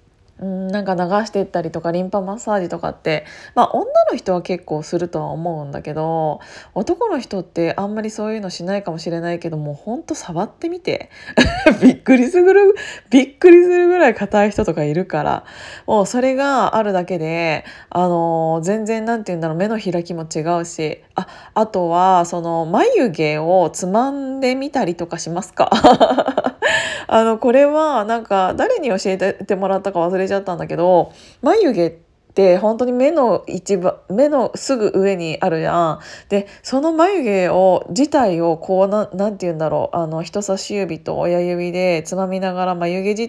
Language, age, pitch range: Japanese, 20-39, 175-230 Hz